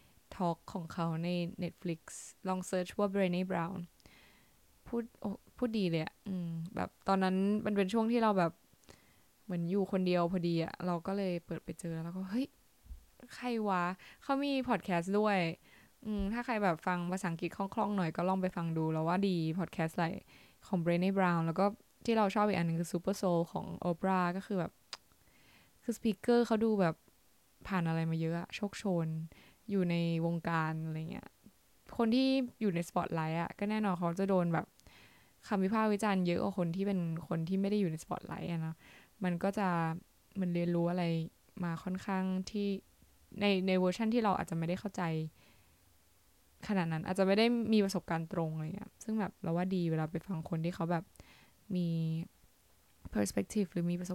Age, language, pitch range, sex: 10-29, Thai, 165-200 Hz, female